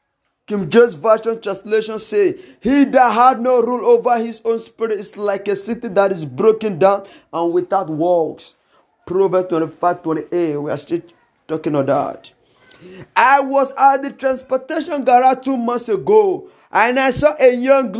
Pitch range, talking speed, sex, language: 205-270 Hz, 160 wpm, male, English